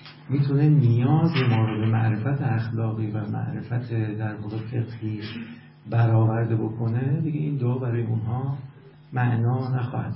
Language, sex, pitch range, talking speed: Persian, male, 115-150 Hz, 125 wpm